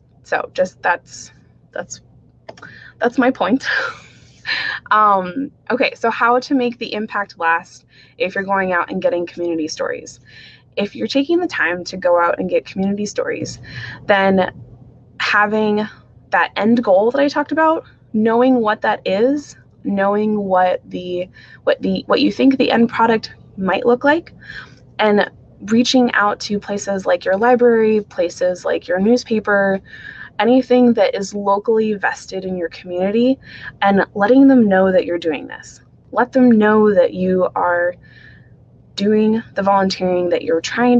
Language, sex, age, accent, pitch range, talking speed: English, female, 20-39, American, 185-245 Hz, 150 wpm